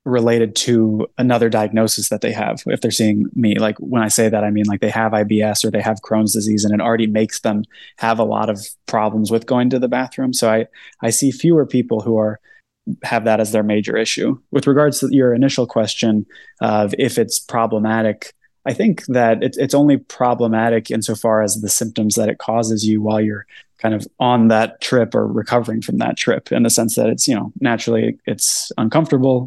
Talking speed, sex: 210 wpm, male